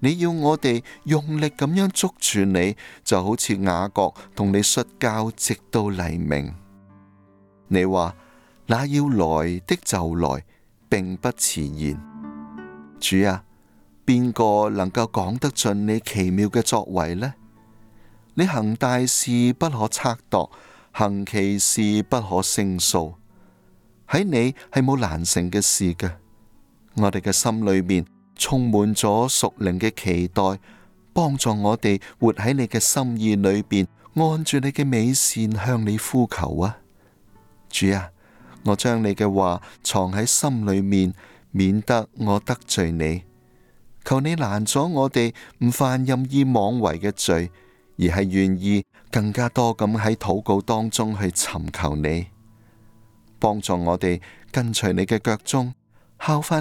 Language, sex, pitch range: Chinese, male, 95-120 Hz